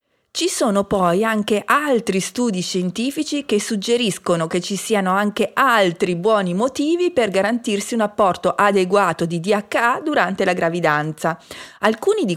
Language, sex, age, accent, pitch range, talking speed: Italian, female, 40-59, native, 180-245 Hz, 135 wpm